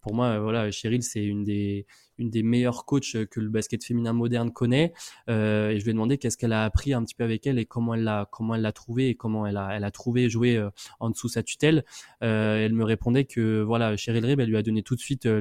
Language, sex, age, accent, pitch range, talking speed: French, male, 20-39, French, 110-130 Hz, 255 wpm